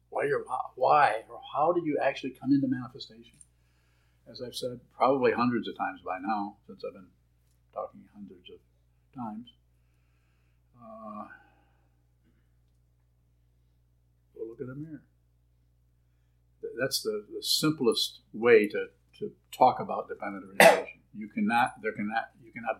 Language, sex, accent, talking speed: English, male, American, 130 wpm